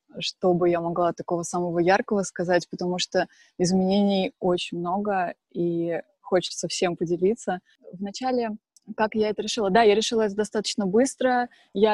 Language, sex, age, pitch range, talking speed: Russian, female, 20-39, 190-220 Hz, 140 wpm